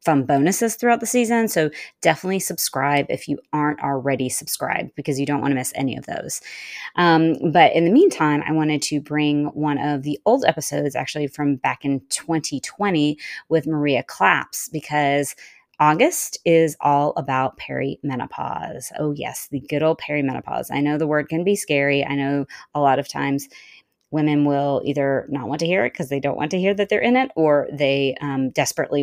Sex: female